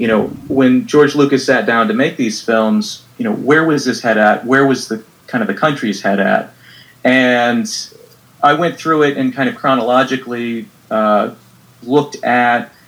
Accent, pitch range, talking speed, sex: American, 110-135 Hz, 180 wpm, male